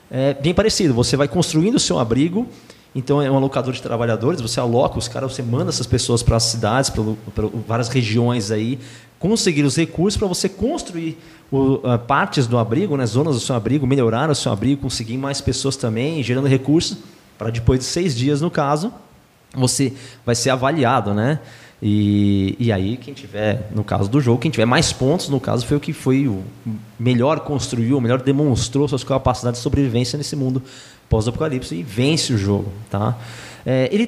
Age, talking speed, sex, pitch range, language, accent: 20-39, 180 wpm, male, 115-150 Hz, Portuguese, Brazilian